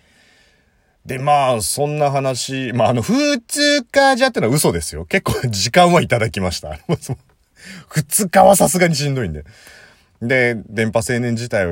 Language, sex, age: Japanese, male, 40-59